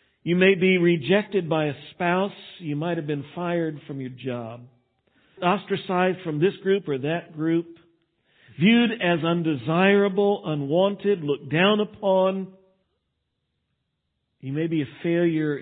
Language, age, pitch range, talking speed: English, 50-69, 130-180 Hz, 130 wpm